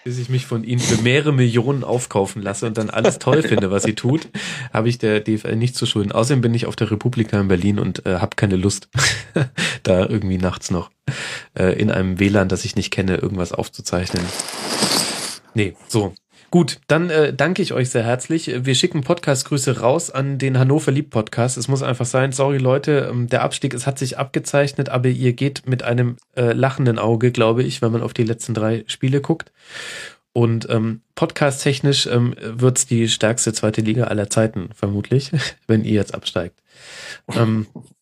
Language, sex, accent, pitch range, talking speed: German, male, German, 110-140 Hz, 185 wpm